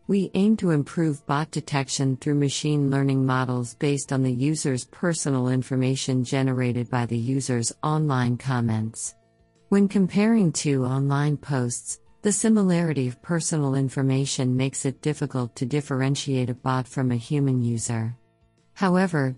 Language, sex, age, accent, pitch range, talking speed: English, female, 50-69, American, 130-150 Hz, 135 wpm